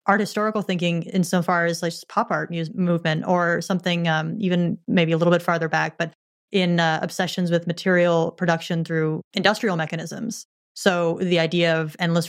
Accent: American